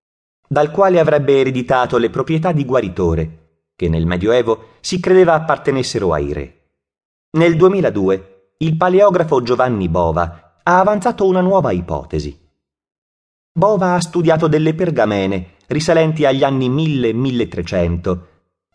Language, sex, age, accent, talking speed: Italian, male, 30-49, native, 115 wpm